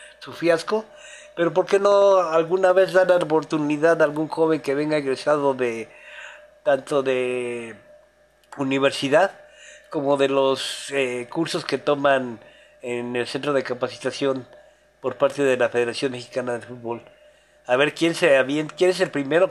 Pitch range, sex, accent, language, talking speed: 140-185 Hz, male, Mexican, Spanish, 150 wpm